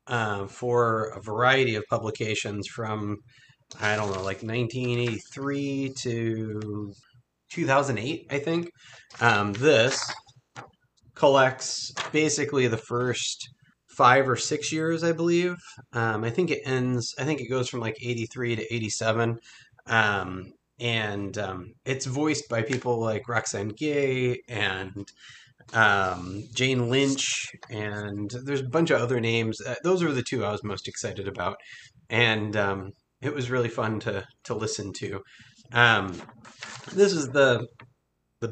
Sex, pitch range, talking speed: male, 110-140 Hz, 135 wpm